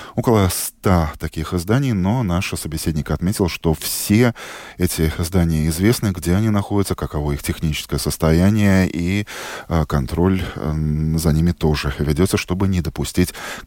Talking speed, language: 135 wpm, Russian